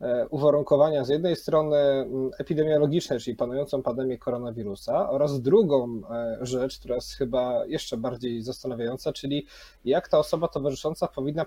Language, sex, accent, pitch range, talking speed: Polish, male, native, 130-155 Hz, 125 wpm